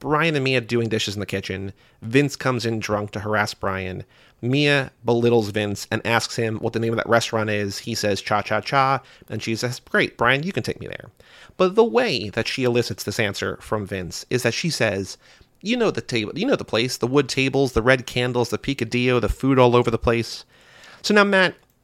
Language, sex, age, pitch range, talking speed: English, male, 30-49, 110-155 Hz, 225 wpm